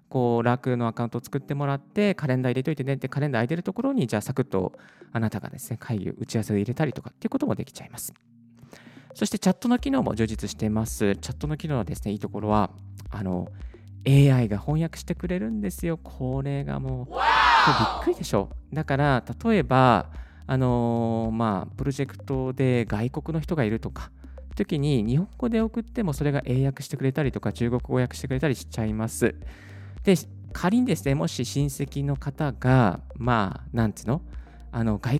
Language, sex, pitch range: Japanese, male, 105-145 Hz